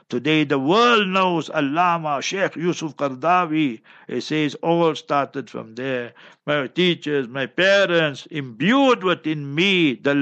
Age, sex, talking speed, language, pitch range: 60-79, male, 130 wpm, English, 150-175 Hz